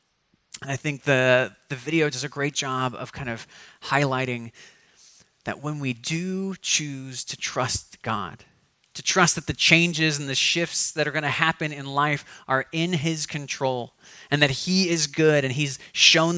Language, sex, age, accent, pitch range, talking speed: English, male, 30-49, American, 130-160 Hz, 175 wpm